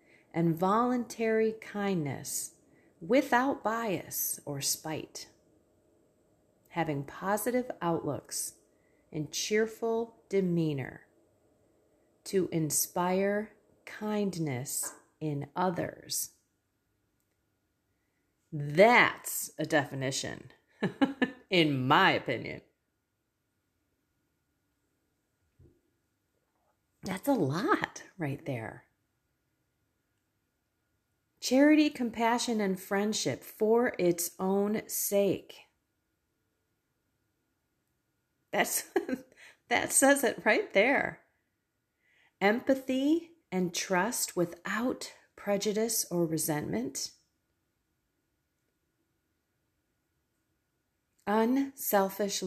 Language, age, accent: English, 30-49, American